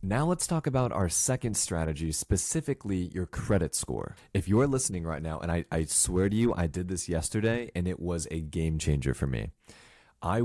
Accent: American